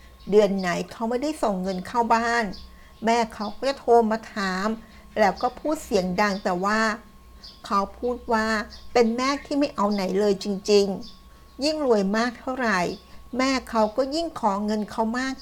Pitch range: 195-235 Hz